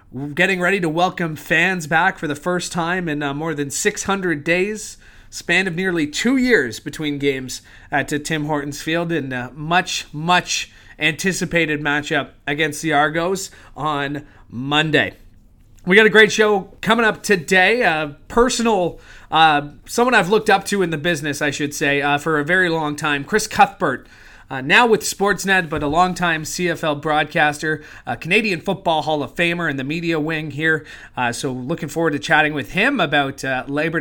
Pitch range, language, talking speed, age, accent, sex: 145-190 Hz, English, 175 wpm, 30-49, American, male